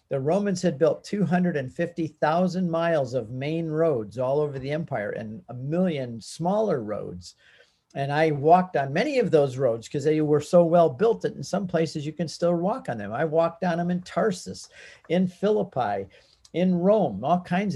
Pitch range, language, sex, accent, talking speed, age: 140-180 Hz, English, male, American, 185 wpm, 50-69